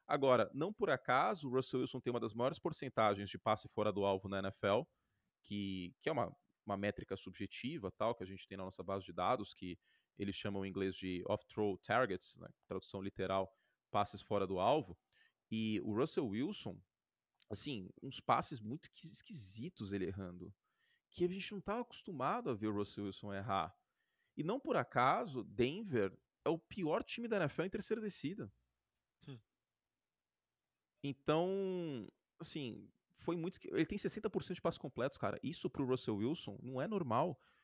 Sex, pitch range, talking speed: male, 100-155 Hz, 170 wpm